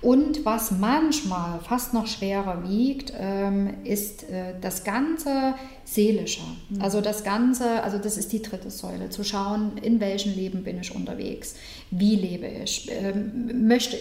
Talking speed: 135 wpm